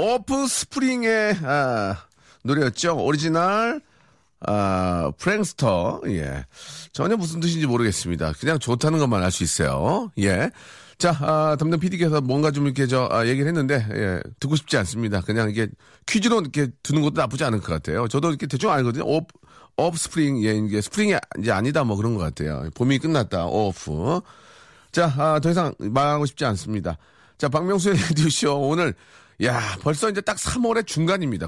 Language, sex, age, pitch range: Korean, male, 40-59, 105-155 Hz